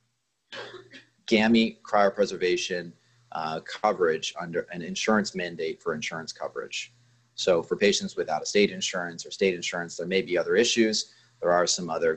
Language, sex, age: English, male, 30-49